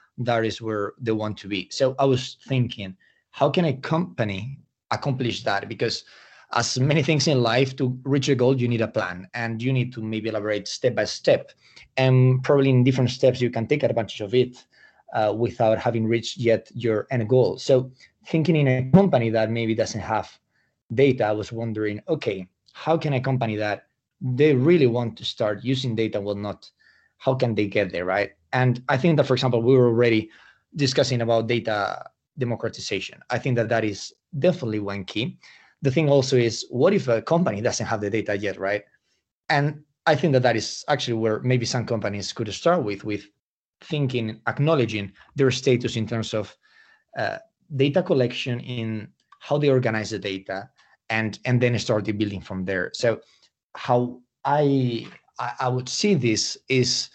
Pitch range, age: 110-135 Hz, 20-39